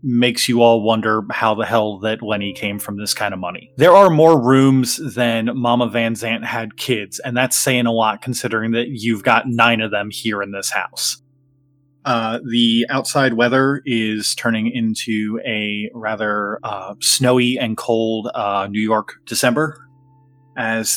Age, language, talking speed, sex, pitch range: 20-39, English, 170 wpm, male, 110-135 Hz